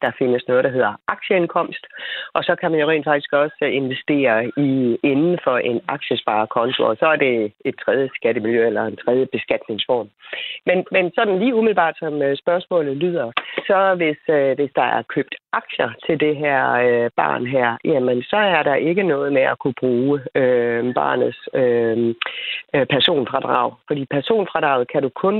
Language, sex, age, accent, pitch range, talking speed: Danish, female, 40-59, native, 125-170 Hz, 165 wpm